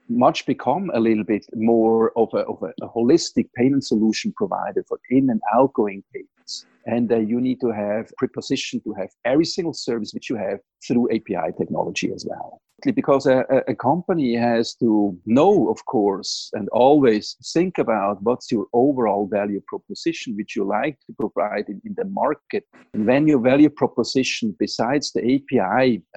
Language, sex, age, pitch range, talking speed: English, male, 50-69, 110-140 Hz, 170 wpm